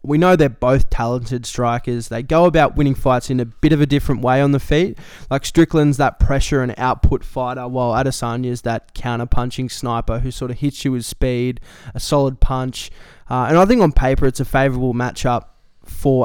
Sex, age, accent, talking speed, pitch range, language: male, 20-39, Australian, 205 wpm, 120-140 Hz, English